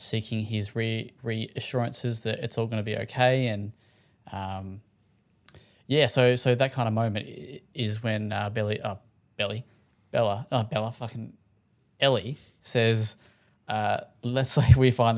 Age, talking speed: 10-29, 145 wpm